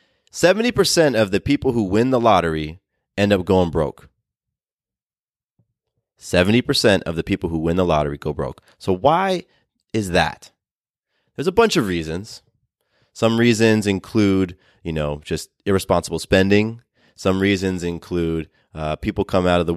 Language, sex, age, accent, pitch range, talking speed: English, male, 30-49, American, 90-120 Hz, 145 wpm